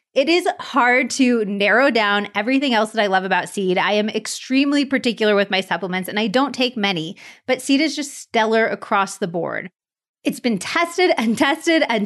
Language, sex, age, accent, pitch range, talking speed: English, female, 30-49, American, 200-255 Hz, 195 wpm